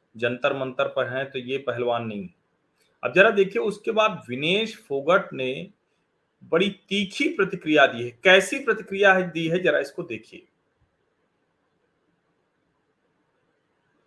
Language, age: Hindi, 40-59